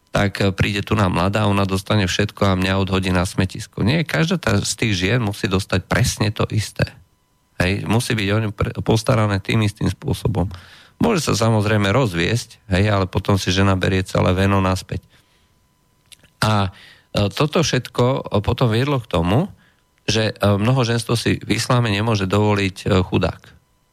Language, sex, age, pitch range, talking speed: Slovak, male, 40-59, 95-115 Hz, 155 wpm